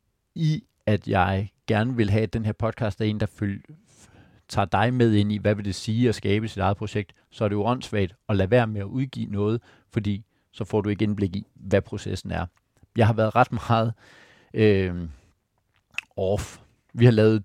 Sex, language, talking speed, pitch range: male, Danish, 205 wpm, 100-120 Hz